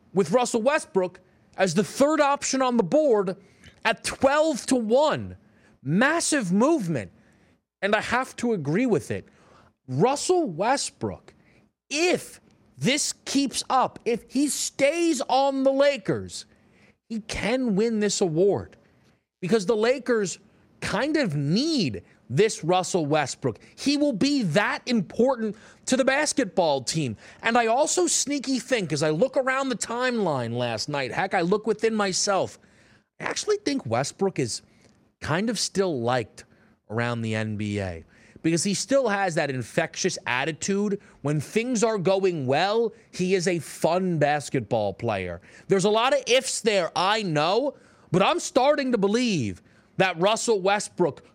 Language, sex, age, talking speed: English, male, 30-49, 140 wpm